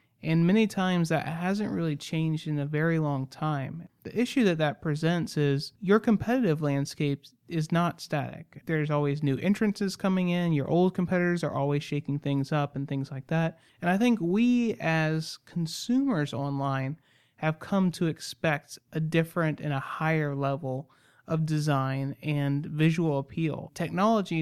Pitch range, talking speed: 140-170 Hz, 160 wpm